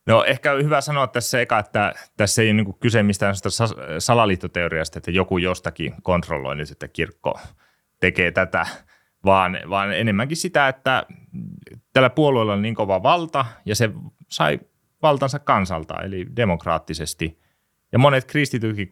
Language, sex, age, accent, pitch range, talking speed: Finnish, male, 30-49, native, 85-120 Hz, 140 wpm